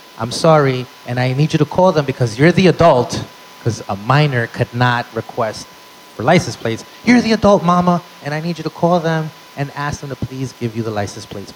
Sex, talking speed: male, 225 wpm